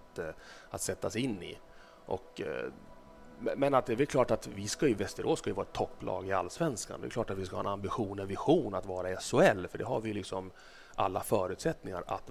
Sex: male